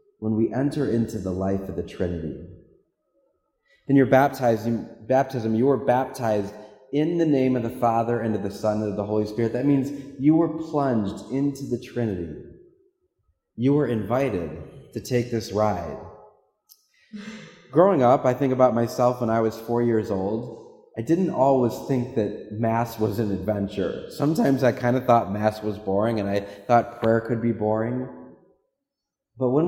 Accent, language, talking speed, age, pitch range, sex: American, English, 170 wpm, 30-49, 105-135 Hz, male